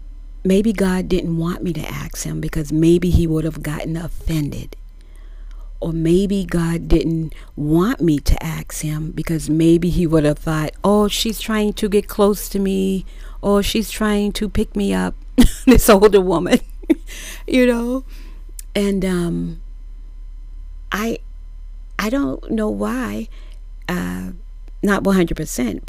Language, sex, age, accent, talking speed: English, female, 40-59, American, 140 wpm